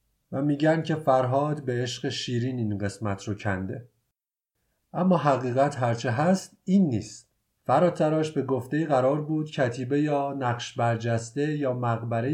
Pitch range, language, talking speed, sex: 120-150 Hz, Persian, 135 wpm, male